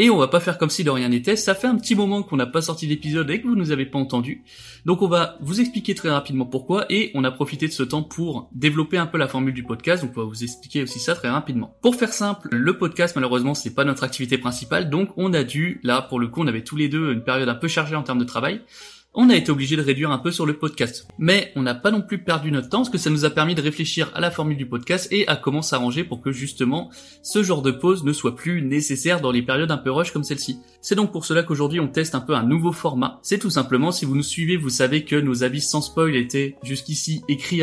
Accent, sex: French, male